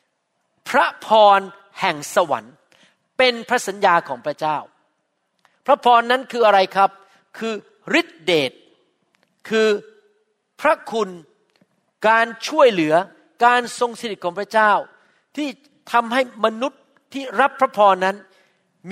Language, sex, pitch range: Thai, male, 185-235 Hz